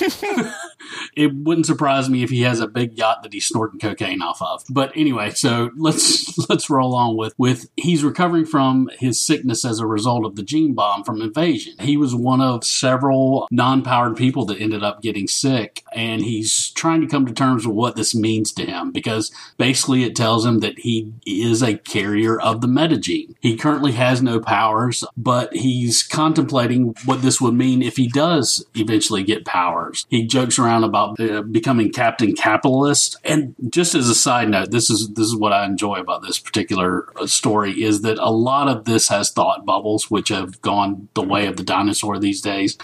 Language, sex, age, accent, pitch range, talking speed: English, male, 40-59, American, 110-140 Hz, 195 wpm